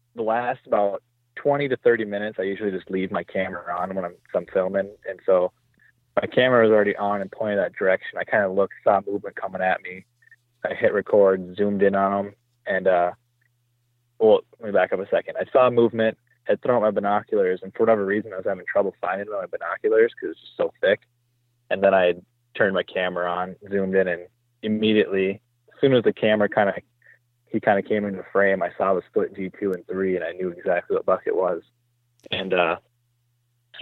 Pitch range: 100-125 Hz